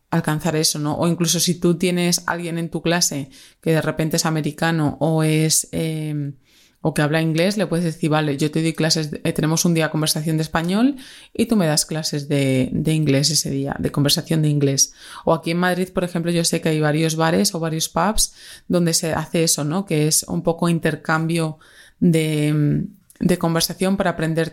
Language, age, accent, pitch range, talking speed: Spanish, 20-39, Spanish, 160-180 Hz, 205 wpm